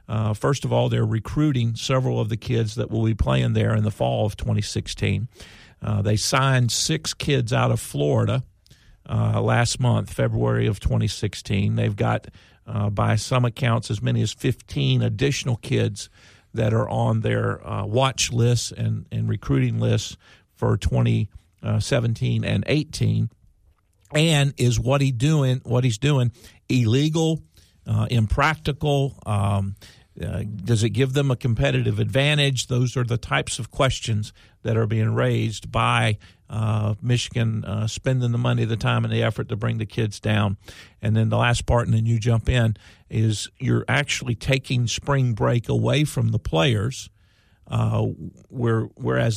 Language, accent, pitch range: English, American, 105-125 Hz